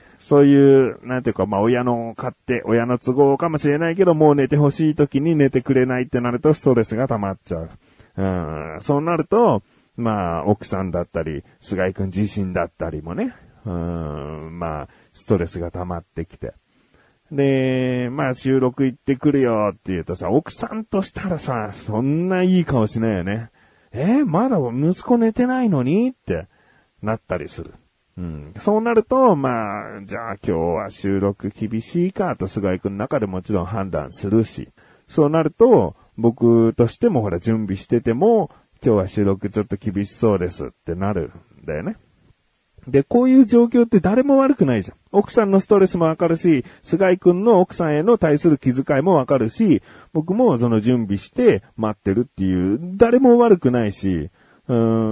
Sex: male